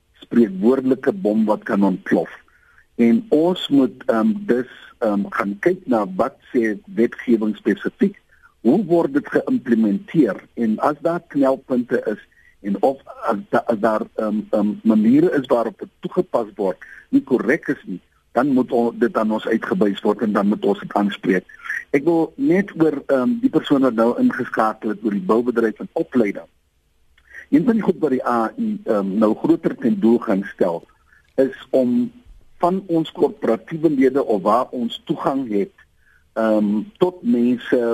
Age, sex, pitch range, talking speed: 50-69, male, 110-170 Hz, 150 wpm